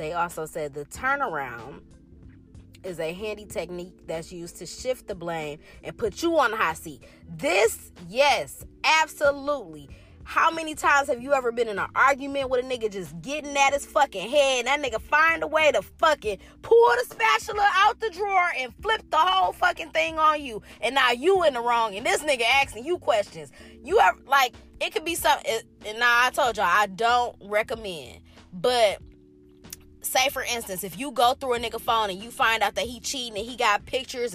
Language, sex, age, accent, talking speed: English, female, 20-39, American, 200 wpm